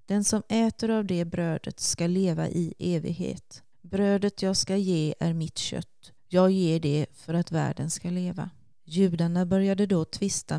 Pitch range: 165-185 Hz